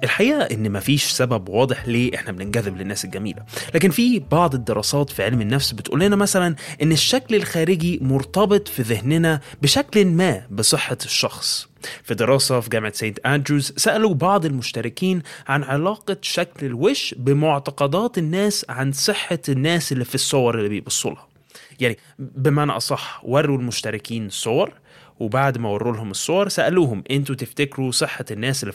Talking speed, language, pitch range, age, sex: 150 wpm, Arabic, 120-170 Hz, 20-39, male